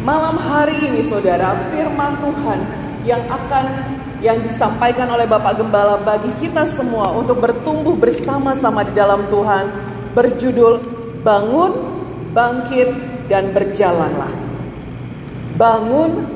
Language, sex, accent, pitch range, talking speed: English, female, Indonesian, 225-320 Hz, 105 wpm